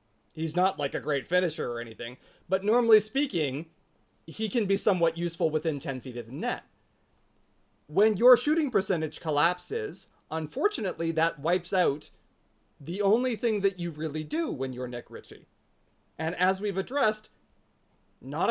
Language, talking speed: English, 150 wpm